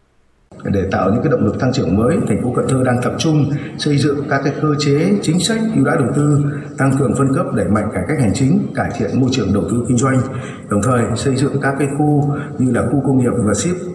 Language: Vietnamese